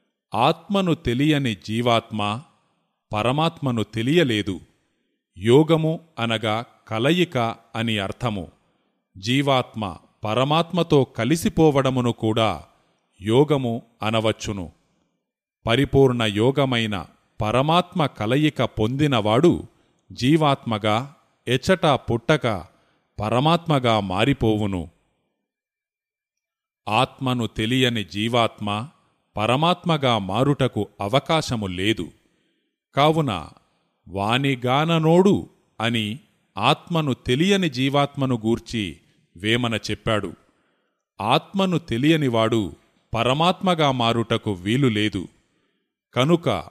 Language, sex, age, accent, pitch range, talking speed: Telugu, male, 30-49, native, 110-145 Hz, 60 wpm